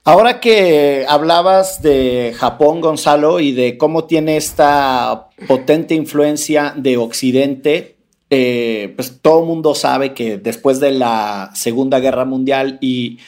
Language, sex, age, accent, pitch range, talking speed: Spanish, male, 50-69, Mexican, 120-145 Hz, 130 wpm